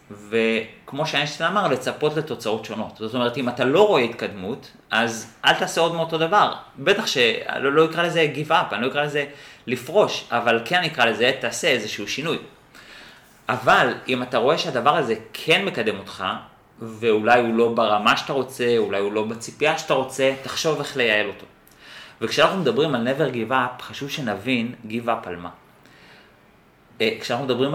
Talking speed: 160 wpm